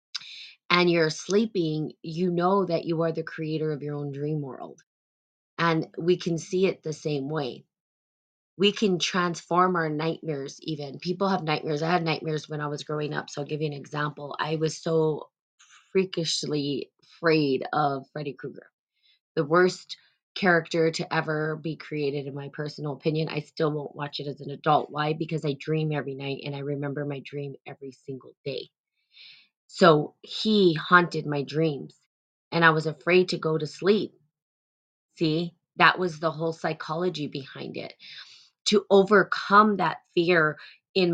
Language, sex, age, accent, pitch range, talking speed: English, female, 20-39, American, 150-175 Hz, 165 wpm